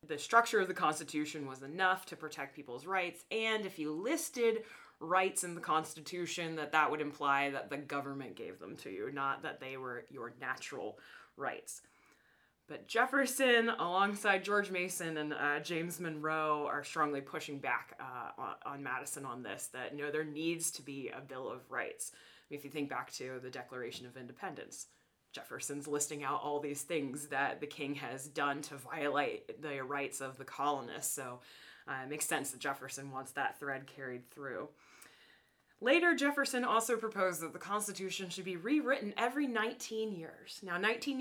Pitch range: 145-200 Hz